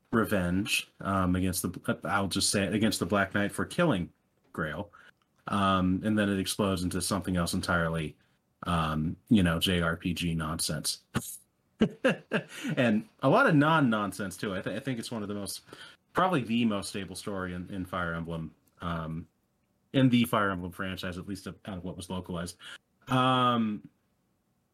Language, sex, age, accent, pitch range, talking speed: English, male, 30-49, American, 95-115 Hz, 160 wpm